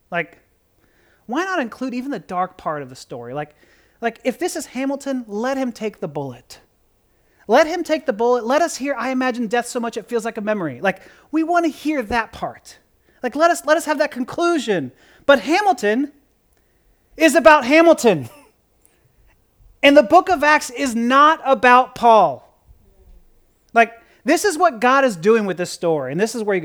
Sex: male